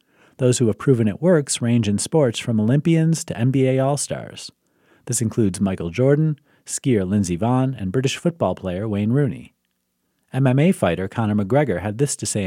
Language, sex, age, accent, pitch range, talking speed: English, male, 40-59, American, 100-140 Hz, 170 wpm